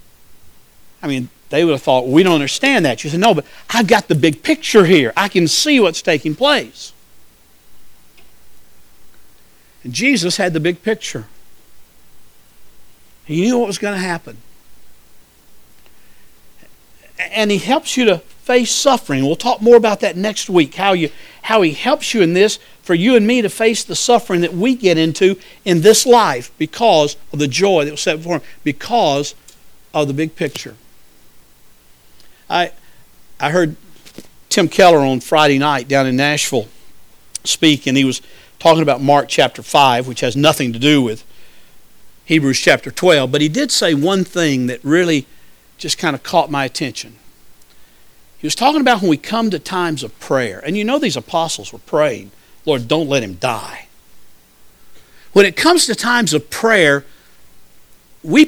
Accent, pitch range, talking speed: American, 140-220 Hz, 170 wpm